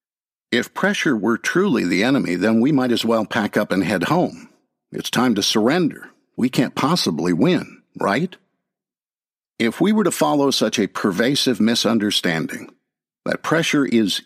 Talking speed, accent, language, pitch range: 155 wpm, American, English, 120-160 Hz